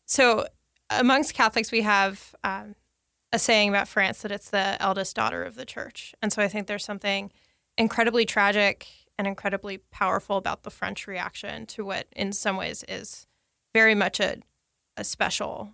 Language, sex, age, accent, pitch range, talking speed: English, female, 20-39, American, 195-230 Hz, 170 wpm